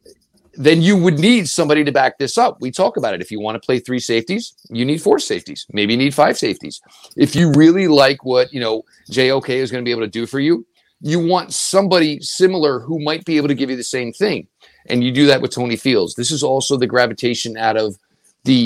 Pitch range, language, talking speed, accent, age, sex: 115-140 Hz, English, 240 wpm, American, 40-59, male